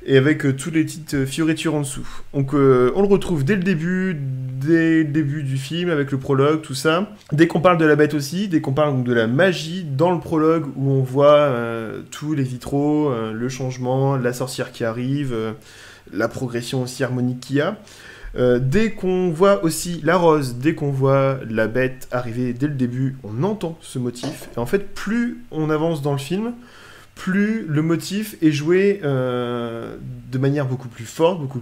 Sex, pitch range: male, 125-160 Hz